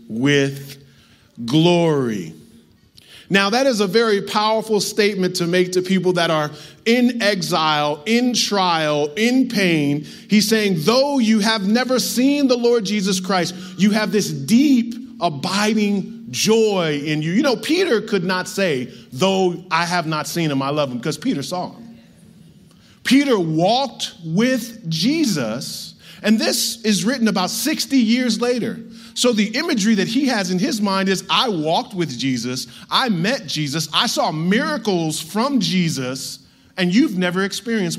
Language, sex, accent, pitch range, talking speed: English, male, American, 155-220 Hz, 155 wpm